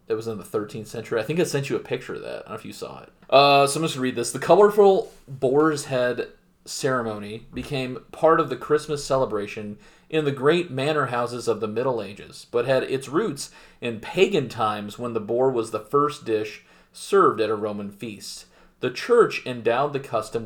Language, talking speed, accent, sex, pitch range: English, 215 wpm, American, male, 115-150 Hz